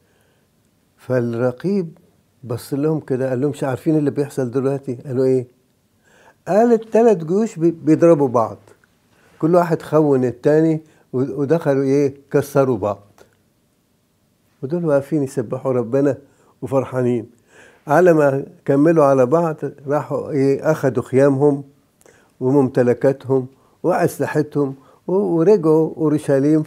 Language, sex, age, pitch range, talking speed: English, male, 60-79, 130-160 Hz, 95 wpm